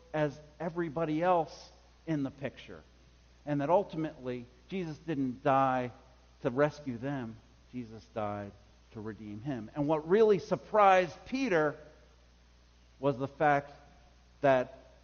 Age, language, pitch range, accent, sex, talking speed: 50-69, English, 95-145 Hz, American, male, 115 wpm